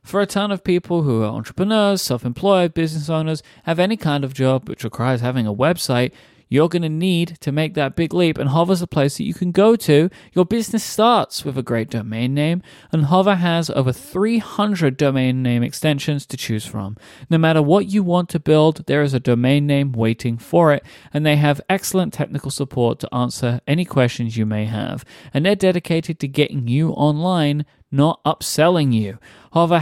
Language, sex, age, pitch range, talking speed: English, male, 30-49, 125-170 Hz, 195 wpm